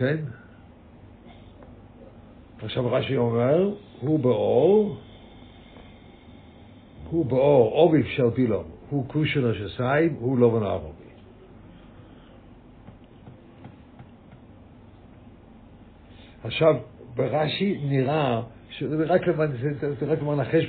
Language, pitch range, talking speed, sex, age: English, 115-145 Hz, 80 wpm, male, 60-79